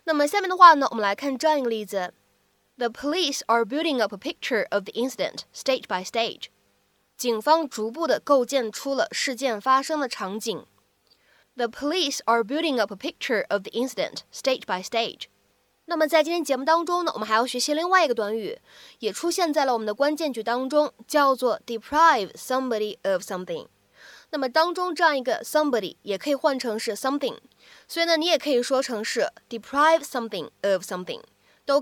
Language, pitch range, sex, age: Chinese, 220-310 Hz, female, 20-39